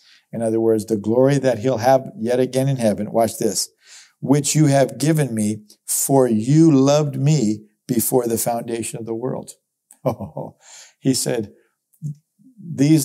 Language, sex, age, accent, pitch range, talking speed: English, male, 50-69, American, 115-135 Hz, 145 wpm